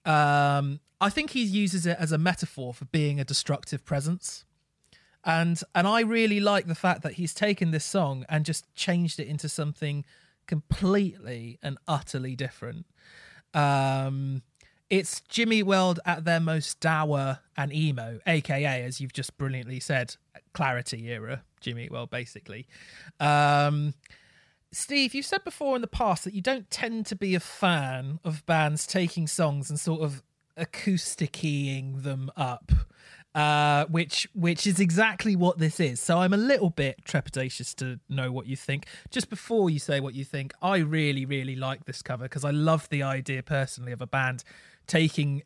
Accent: British